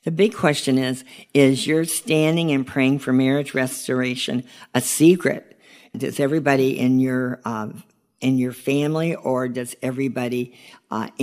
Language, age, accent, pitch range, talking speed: English, 50-69, American, 125-145 Hz, 140 wpm